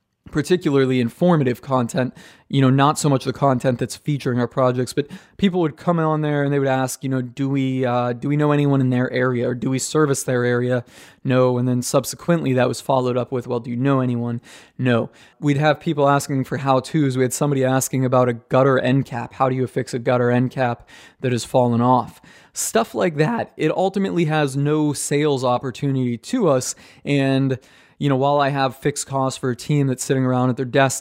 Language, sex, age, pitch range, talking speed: English, male, 20-39, 125-145 Hz, 220 wpm